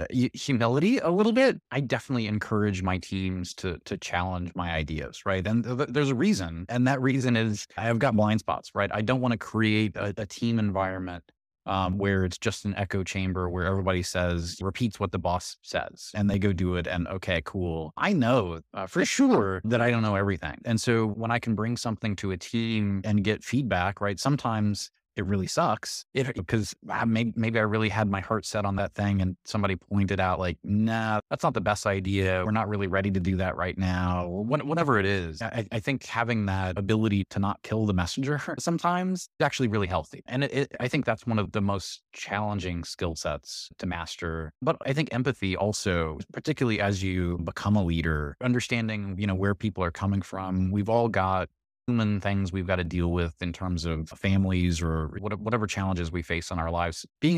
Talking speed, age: 210 wpm, 30-49